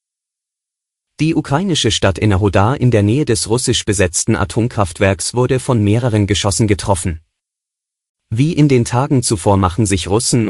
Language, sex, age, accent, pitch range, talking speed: German, male, 30-49, German, 100-120 Hz, 135 wpm